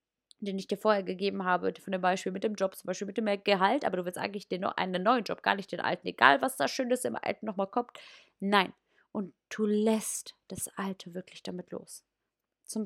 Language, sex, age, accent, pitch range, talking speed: German, female, 20-39, German, 195-255 Hz, 225 wpm